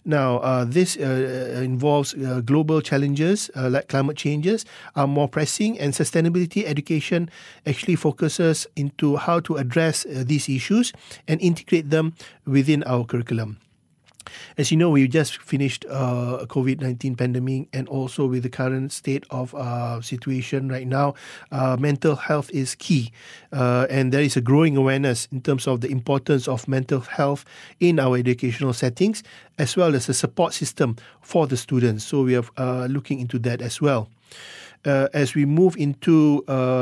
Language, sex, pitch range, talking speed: English, male, 130-150 Hz, 165 wpm